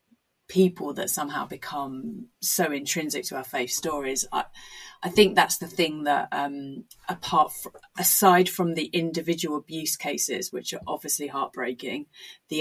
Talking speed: 150 wpm